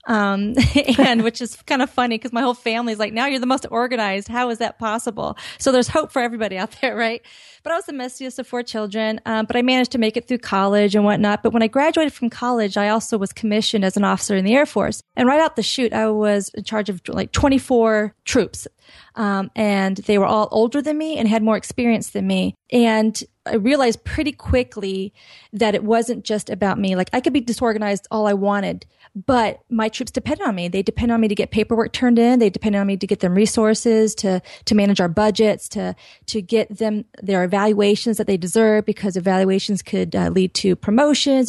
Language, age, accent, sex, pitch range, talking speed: English, 30-49, American, female, 205-245 Hz, 225 wpm